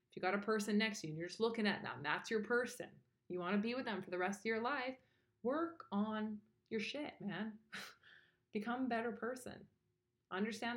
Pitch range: 170-215 Hz